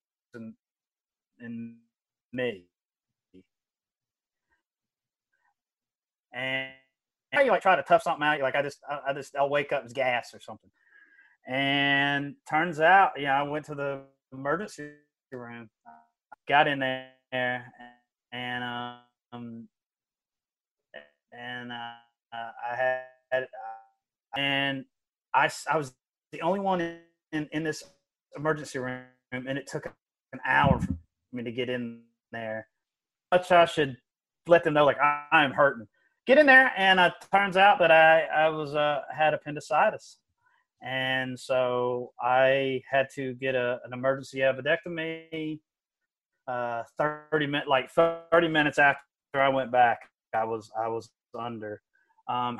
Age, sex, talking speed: 30-49, male, 145 wpm